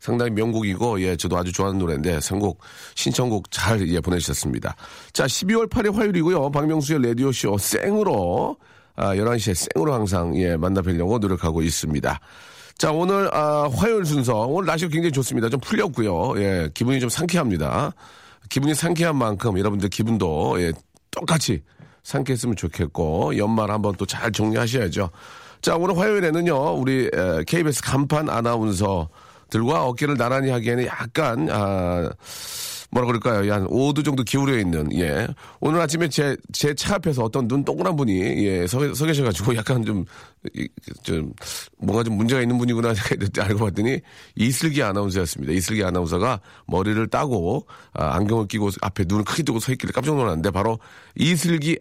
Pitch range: 95-140 Hz